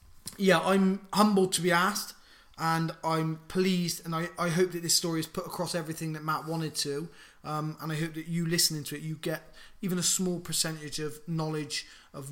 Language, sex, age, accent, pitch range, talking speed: English, male, 20-39, British, 160-190 Hz, 205 wpm